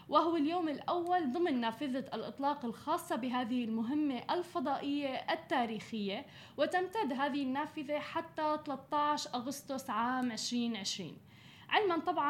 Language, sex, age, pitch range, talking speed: Arabic, female, 10-29, 240-295 Hz, 105 wpm